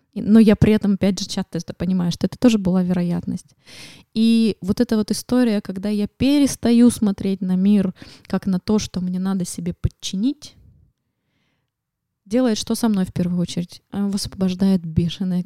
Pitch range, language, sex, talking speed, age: 185-220 Hz, Russian, female, 160 wpm, 20-39